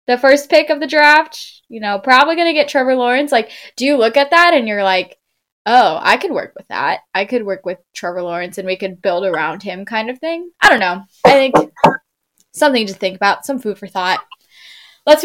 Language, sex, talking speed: English, female, 230 wpm